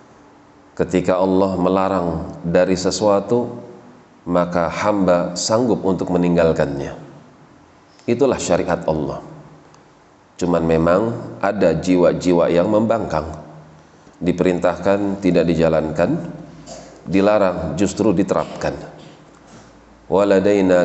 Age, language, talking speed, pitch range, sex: 40-59, Indonesian, 75 wpm, 85-95 Hz, male